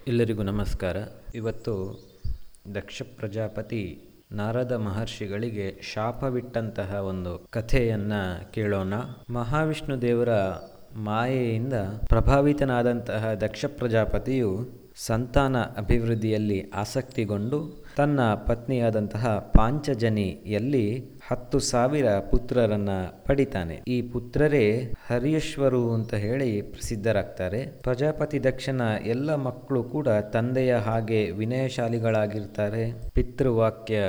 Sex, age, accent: male, 20-39, native